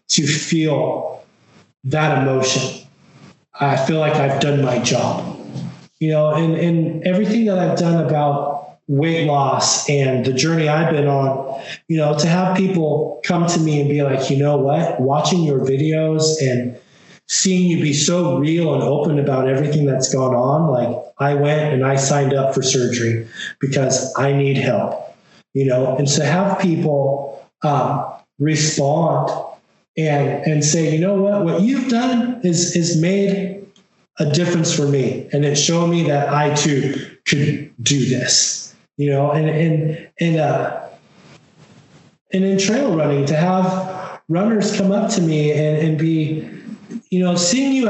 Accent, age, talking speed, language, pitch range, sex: American, 20-39, 160 wpm, English, 140-185 Hz, male